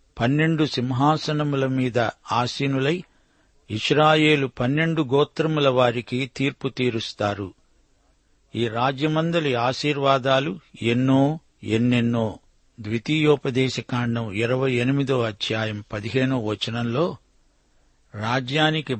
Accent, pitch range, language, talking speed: native, 120-140 Hz, Telugu, 70 wpm